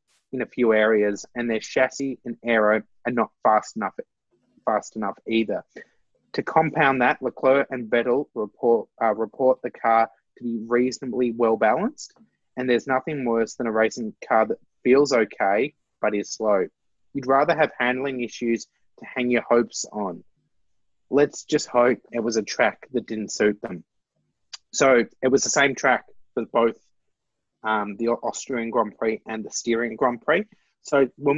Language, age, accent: English, 20-39, Australian